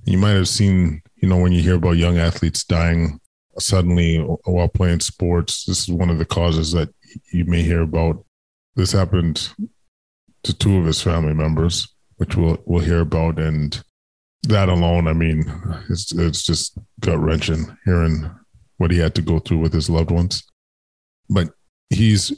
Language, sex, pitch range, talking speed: English, male, 85-95 Hz, 170 wpm